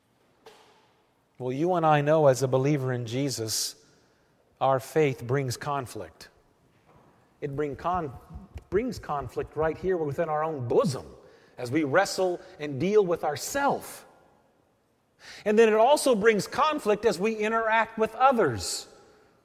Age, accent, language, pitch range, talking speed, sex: 40-59, American, English, 150-220 Hz, 125 wpm, male